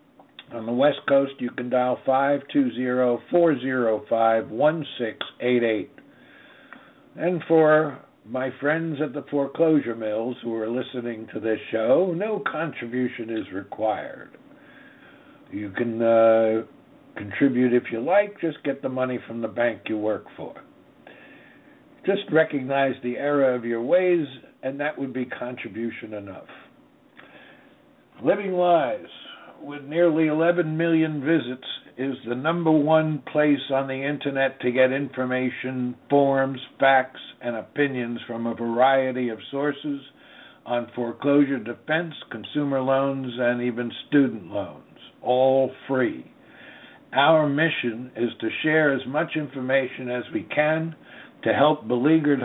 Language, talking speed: English, 125 wpm